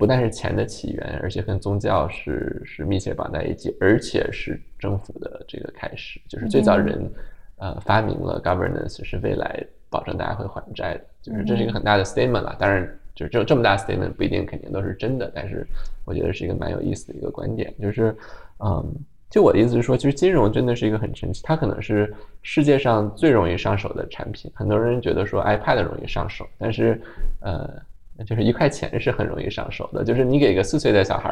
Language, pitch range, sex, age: Chinese, 100-120 Hz, male, 20-39